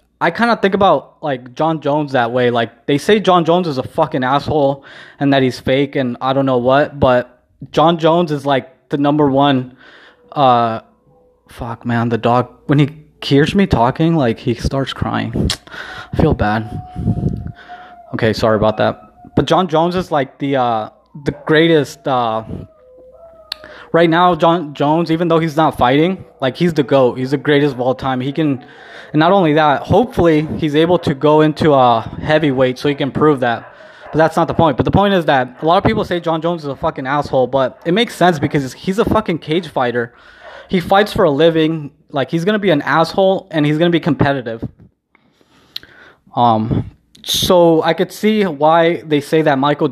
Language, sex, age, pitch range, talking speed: English, male, 20-39, 130-165 Hz, 195 wpm